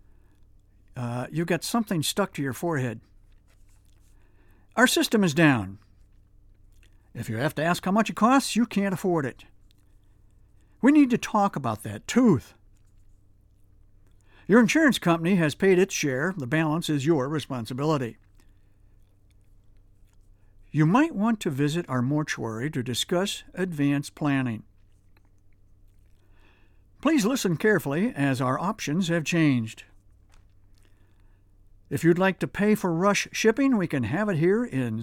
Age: 60-79